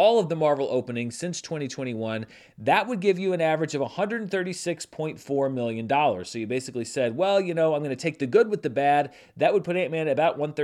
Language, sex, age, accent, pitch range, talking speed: English, male, 30-49, American, 125-180 Hz, 215 wpm